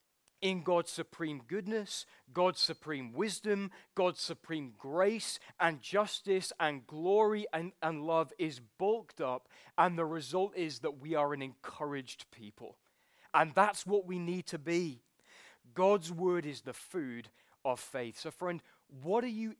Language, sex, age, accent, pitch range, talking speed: English, male, 20-39, British, 130-185 Hz, 150 wpm